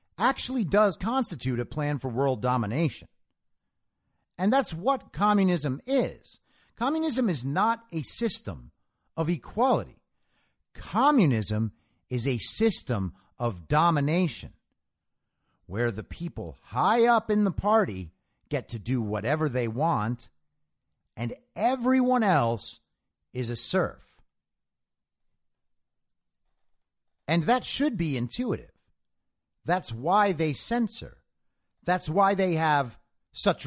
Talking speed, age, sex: 105 wpm, 50-69, male